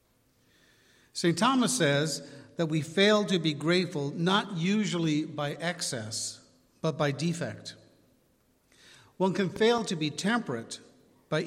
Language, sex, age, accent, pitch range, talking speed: English, male, 50-69, American, 135-175 Hz, 120 wpm